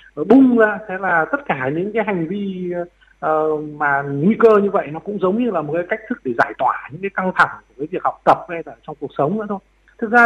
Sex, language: male, Vietnamese